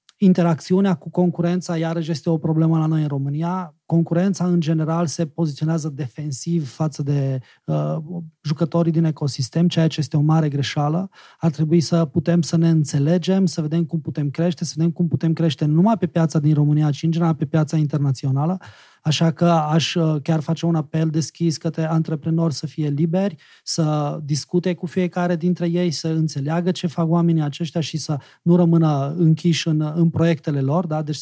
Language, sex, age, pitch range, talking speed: Romanian, male, 20-39, 155-175 Hz, 175 wpm